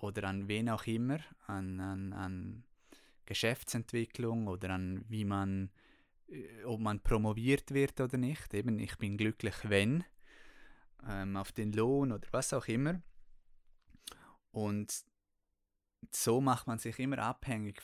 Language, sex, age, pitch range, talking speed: German, male, 20-39, 100-115 Hz, 130 wpm